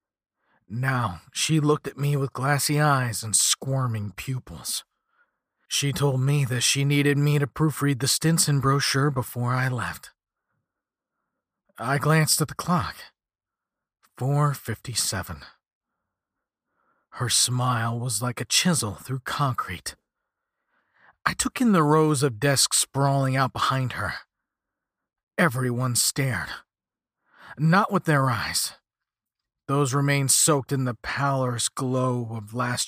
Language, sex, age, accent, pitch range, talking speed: English, male, 40-59, American, 120-150 Hz, 120 wpm